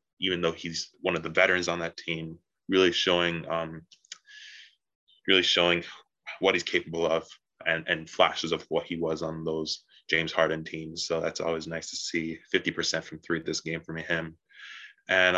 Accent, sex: American, male